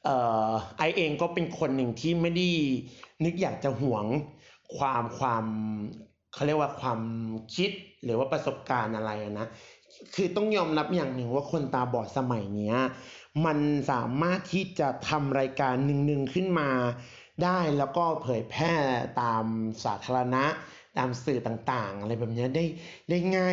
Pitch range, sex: 120-155 Hz, male